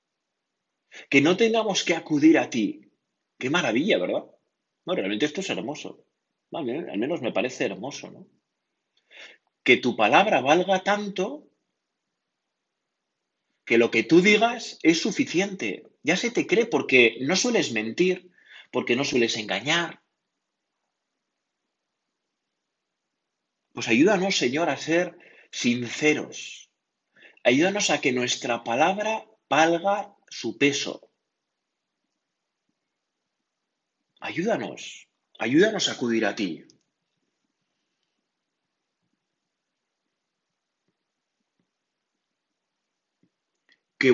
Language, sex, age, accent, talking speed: Spanish, male, 30-49, Spanish, 95 wpm